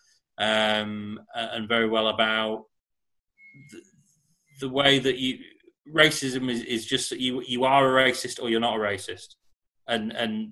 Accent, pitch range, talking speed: British, 110-130 Hz, 155 wpm